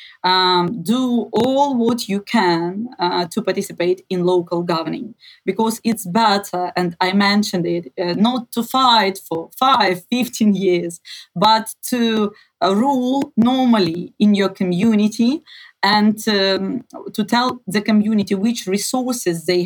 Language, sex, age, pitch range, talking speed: Ukrainian, female, 30-49, 185-225 Hz, 135 wpm